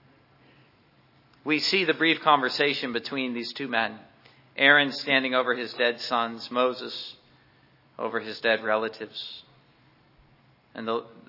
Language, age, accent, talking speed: English, 50-69, American, 110 wpm